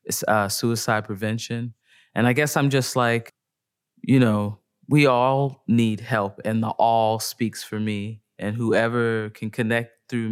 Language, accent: English, American